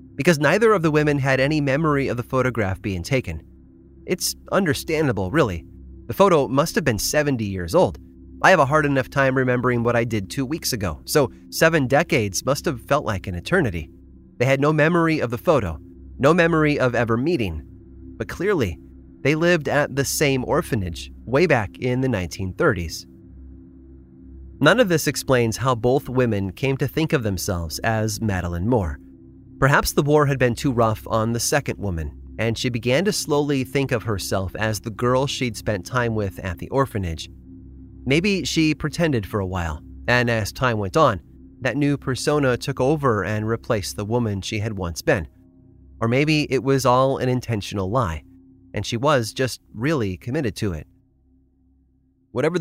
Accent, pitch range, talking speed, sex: American, 90-135 Hz, 180 wpm, male